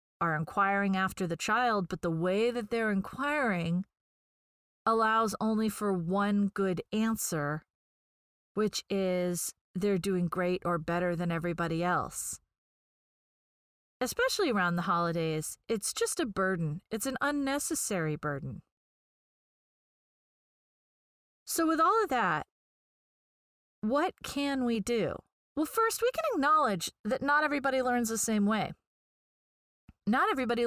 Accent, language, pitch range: American, English, 180-245 Hz